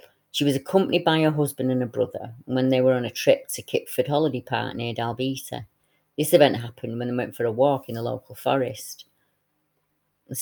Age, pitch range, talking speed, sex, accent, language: 30-49, 125-145 Hz, 200 wpm, female, British, English